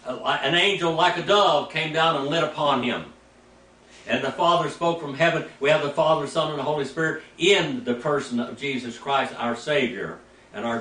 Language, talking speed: English, 200 wpm